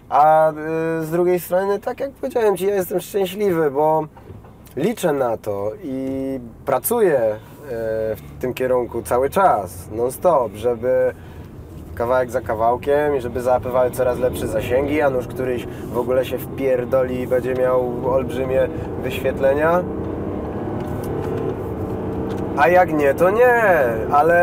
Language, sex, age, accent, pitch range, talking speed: Polish, male, 20-39, native, 130-170 Hz, 130 wpm